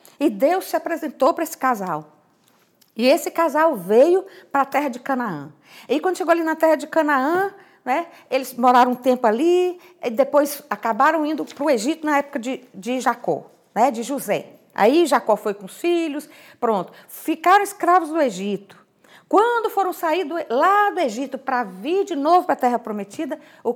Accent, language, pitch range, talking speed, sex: Brazilian, Portuguese, 225-325 Hz, 180 wpm, female